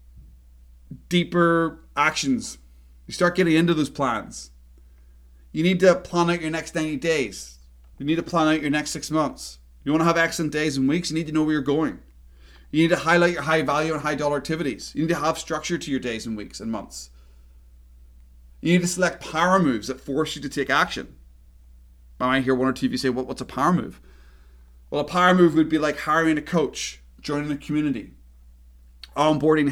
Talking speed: 210 wpm